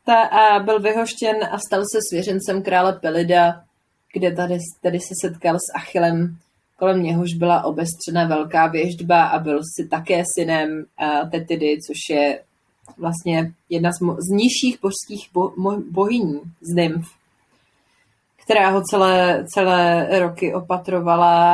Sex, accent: female, native